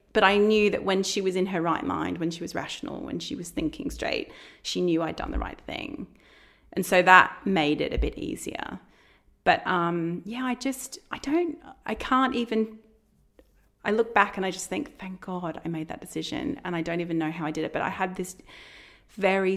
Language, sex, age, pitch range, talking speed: English, female, 30-49, 170-210 Hz, 220 wpm